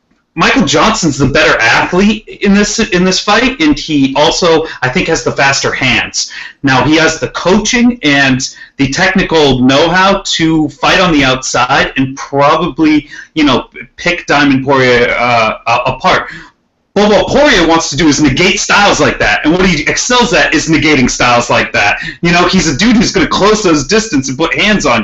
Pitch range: 140-200 Hz